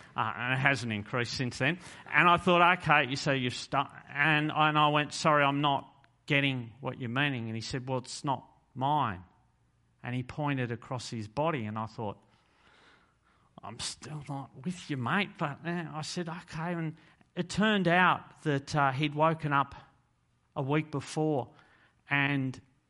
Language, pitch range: English, 115-145 Hz